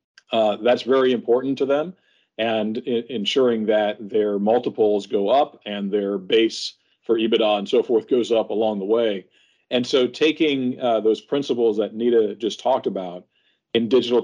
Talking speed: 160 wpm